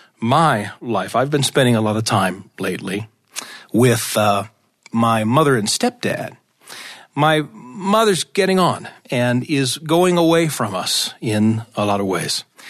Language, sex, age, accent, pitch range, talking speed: English, male, 40-59, American, 115-160 Hz, 145 wpm